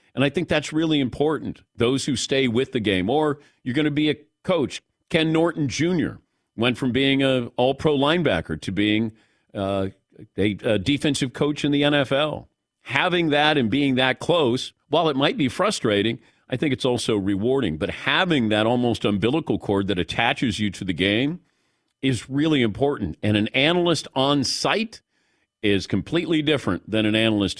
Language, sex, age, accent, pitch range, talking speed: English, male, 50-69, American, 115-155 Hz, 175 wpm